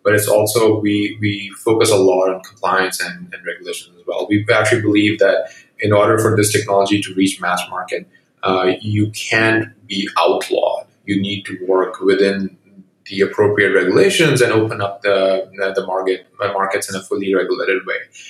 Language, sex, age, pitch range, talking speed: English, male, 20-39, 95-115 Hz, 175 wpm